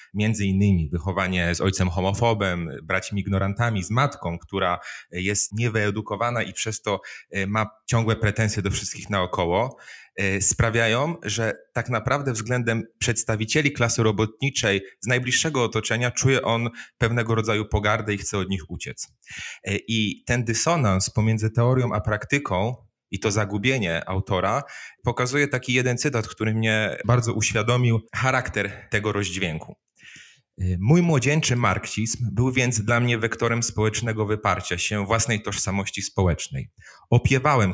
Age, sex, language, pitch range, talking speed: 30-49, male, Polish, 100-125 Hz, 125 wpm